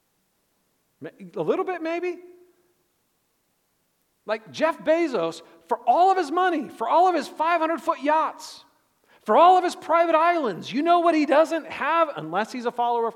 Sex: male